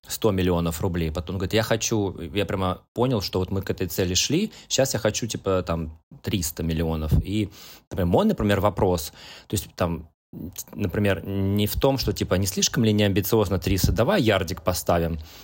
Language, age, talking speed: Russian, 20-39, 175 wpm